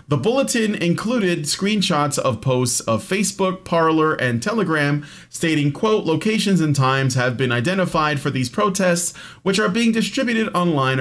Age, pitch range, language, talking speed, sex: 40-59, 130-185 Hz, English, 145 wpm, male